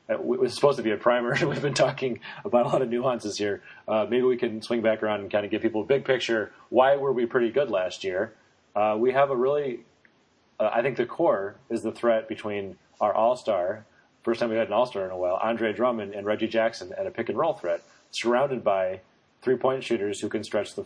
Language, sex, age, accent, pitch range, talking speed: English, male, 30-49, American, 105-125 Hz, 230 wpm